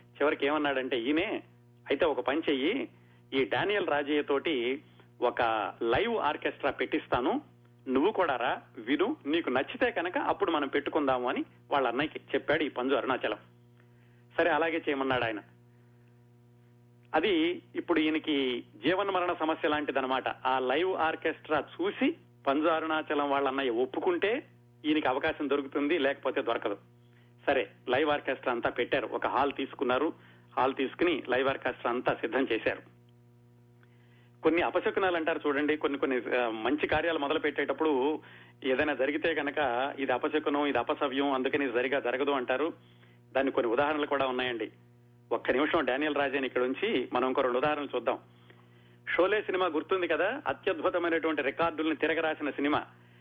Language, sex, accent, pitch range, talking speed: Telugu, male, native, 120-155 Hz, 130 wpm